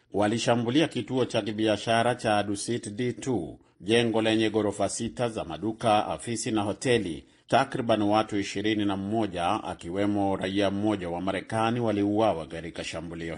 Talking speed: 125 wpm